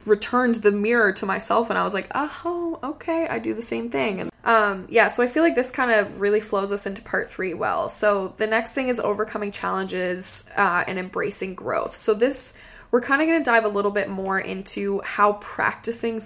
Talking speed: 220 wpm